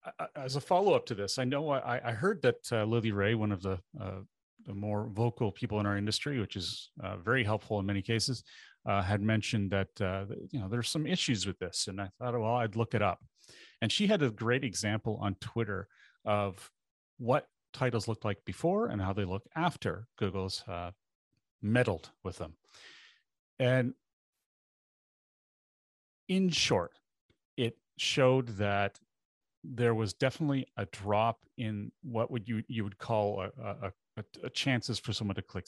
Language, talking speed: English, 175 wpm